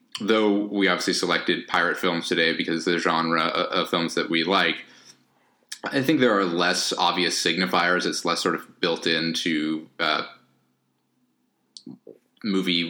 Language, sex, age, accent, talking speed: English, male, 30-49, American, 140 wpm